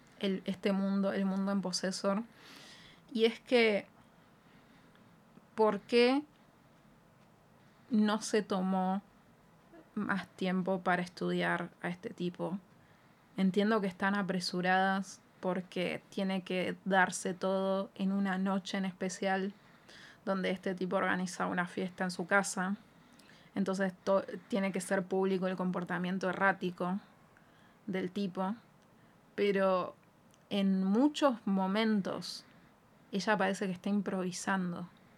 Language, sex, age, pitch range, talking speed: Spanish, female, 20-39, 185-205 Hz, 105 wpm